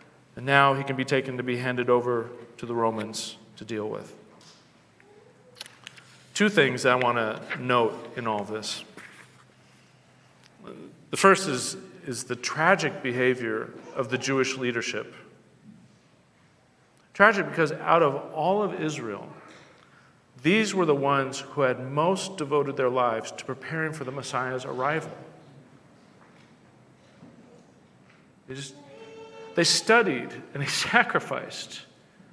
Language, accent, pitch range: English, American, 135-215 Hz